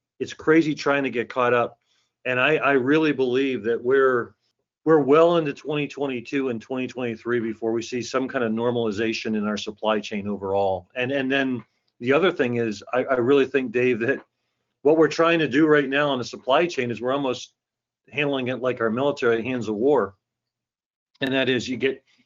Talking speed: 195 wpm